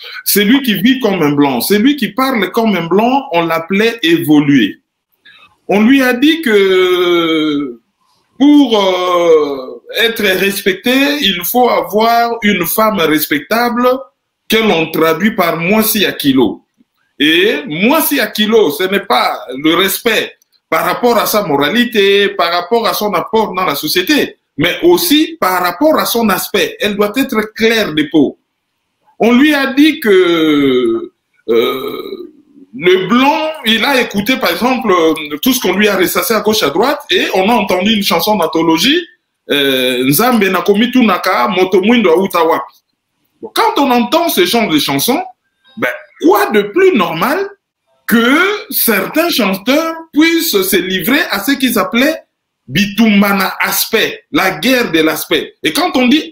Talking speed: 150 wpm